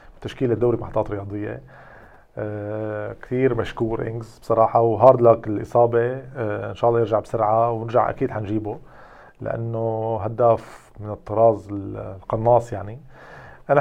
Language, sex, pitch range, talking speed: Arabic, male, 115-140 Hz, 115 wpm